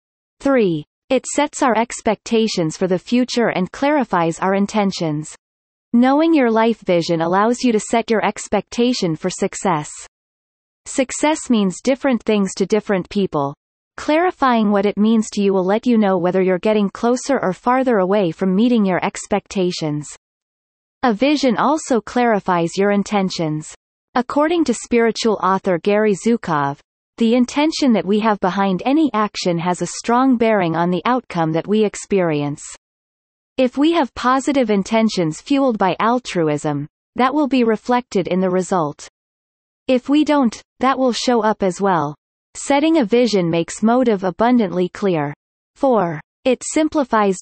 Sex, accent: female, American